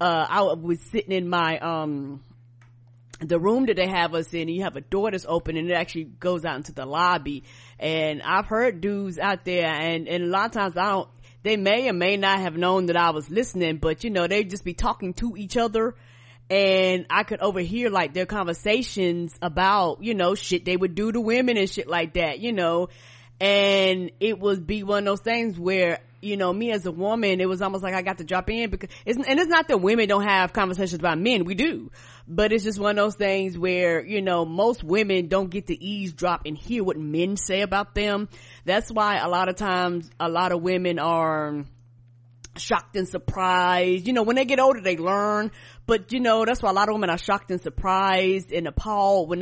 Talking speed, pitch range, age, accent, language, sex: 225 wpm, 170-205 Hz, 30-49, American, English, female